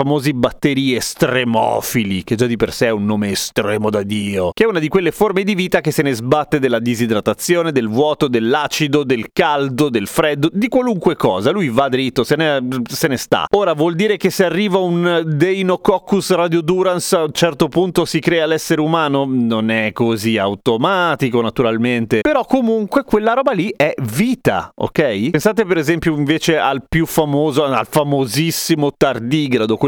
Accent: native